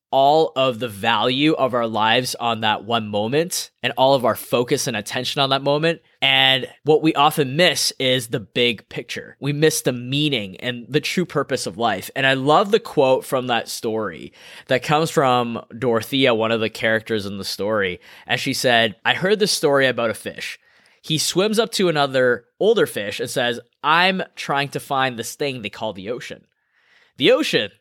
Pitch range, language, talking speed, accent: 125-170 Hz, English, 195 wpm, American